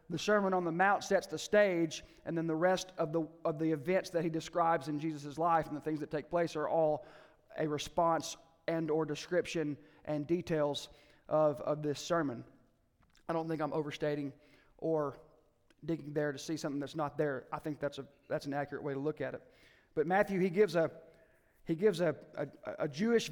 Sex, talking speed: male, 205 wpm